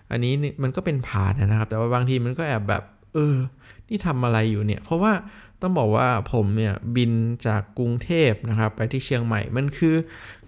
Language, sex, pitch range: Thai, male, 110-145 Hz